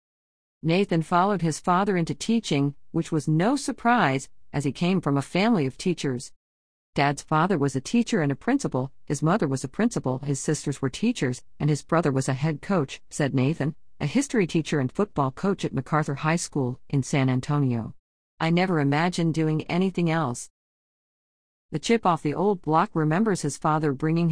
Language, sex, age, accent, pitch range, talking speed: English, female, 50-69, American, 140-195 Hz, 180 wpm